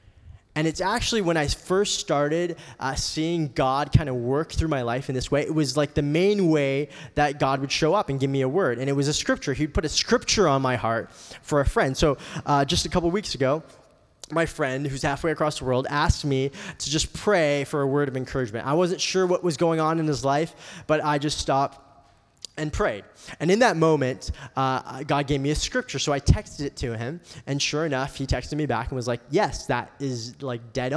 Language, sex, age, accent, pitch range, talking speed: English, male, 20-39, American, 135-165 Hz, 235 wpm